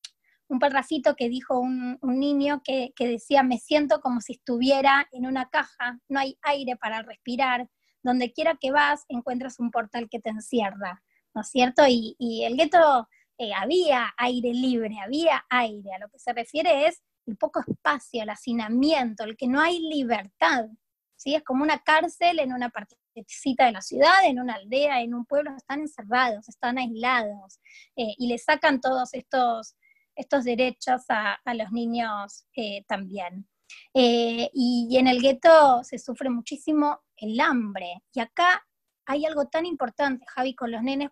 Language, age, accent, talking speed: Spanish, 20-39, Argentinian, 170 wpm